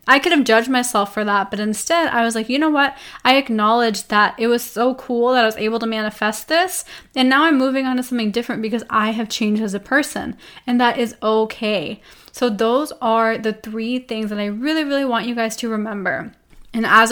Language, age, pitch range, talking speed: English, 10-29, 215-245 Hz, 230 wpm